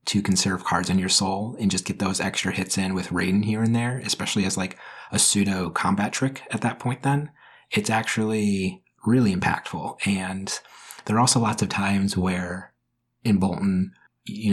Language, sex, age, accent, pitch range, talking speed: English, male, 30-49, American, 95-110 Hz, 180 wpm